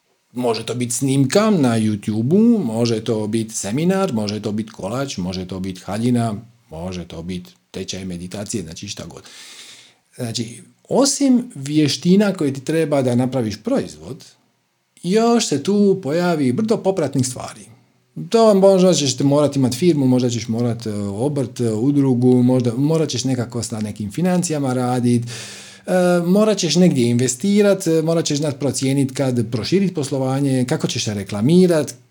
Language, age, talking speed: Croatian, 50-69, 140 wpm